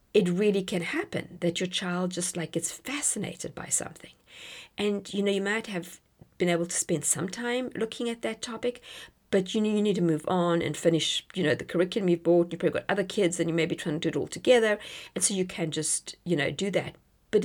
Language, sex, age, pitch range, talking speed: English, female, 50-69, 175-230 Hz, 240 wpm